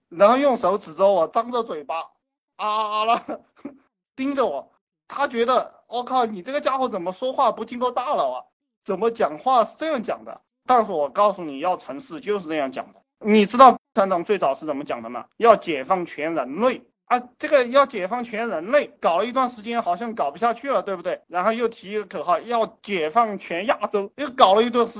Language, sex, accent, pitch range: Chinese, male, native, 180-260 Hz